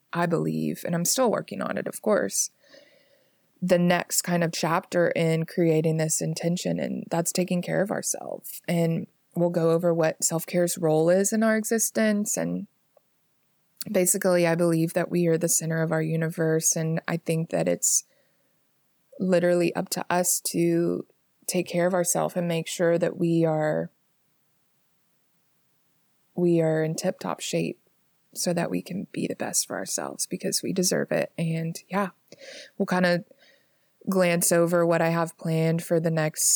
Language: English